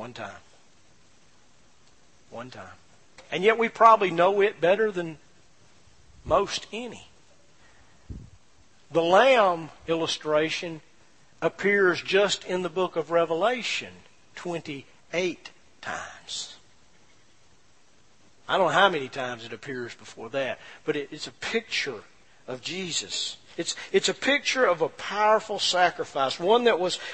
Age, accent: 50-69, American